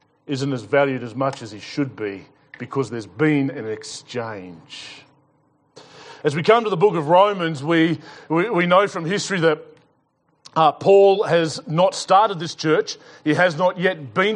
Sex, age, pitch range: male, 30-49, 150-195 Hz